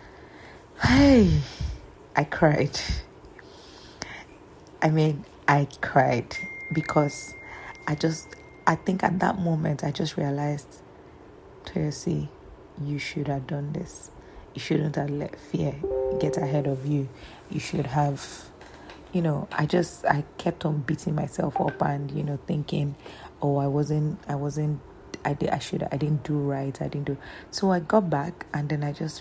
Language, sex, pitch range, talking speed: English, female, 145-170 Hz, 150 wpm